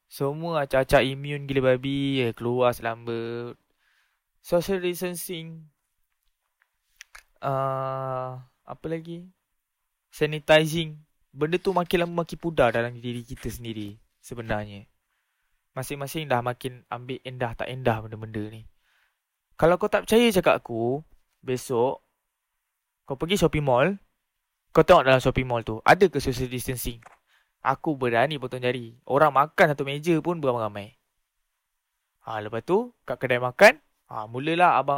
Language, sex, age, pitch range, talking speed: Malay, male, 20-39, 120-155 Hz, 125 wpm